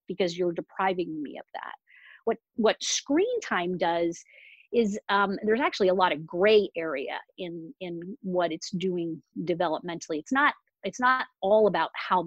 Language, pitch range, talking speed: English, 180-230 Hz, 160 wpm